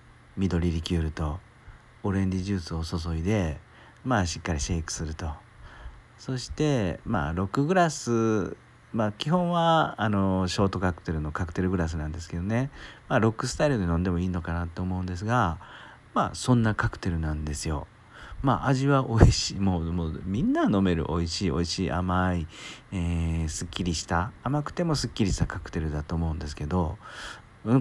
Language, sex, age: Japanese, male, 40-59